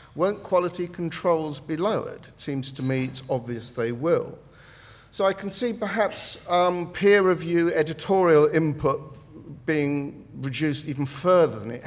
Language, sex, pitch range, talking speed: English, male, 120-165 Hz, 145 wpm